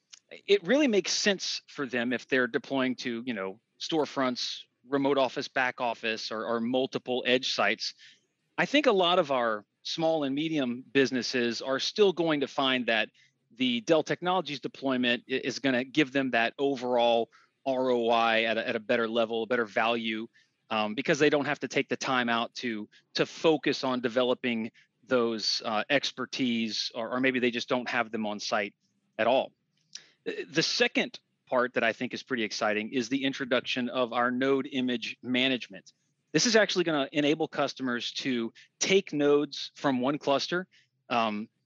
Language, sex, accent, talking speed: English, male, American, 170 wpm